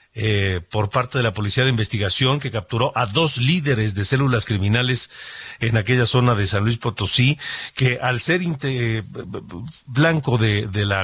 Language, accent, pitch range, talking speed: Spanish, Mexican, 115-140 Hz, 170 wpm